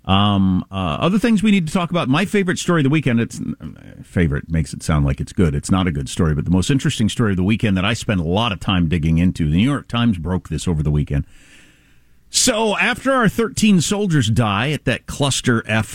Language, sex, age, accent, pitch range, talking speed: English, male, 50-69, American, 95-150 Hz, 245 wpm